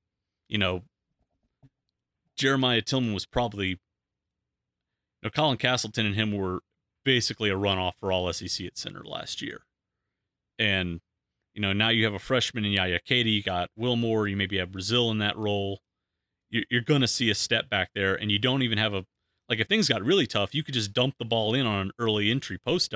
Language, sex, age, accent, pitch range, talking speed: English, male, 30-49, American, 95-120 Hz, 200 wpm